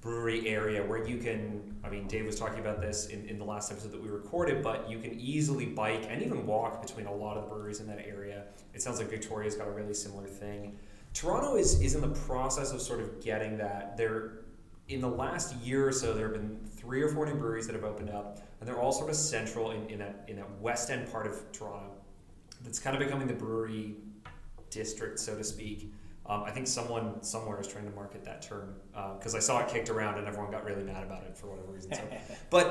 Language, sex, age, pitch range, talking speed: English, male, 30-49, 105-120 Hz, 240 wpm